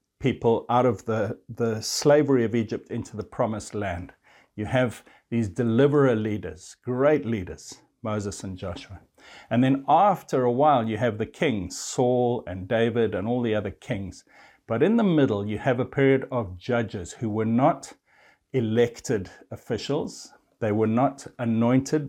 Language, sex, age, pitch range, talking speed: English, male, 60-79, 105-130 Hz, 160 wpm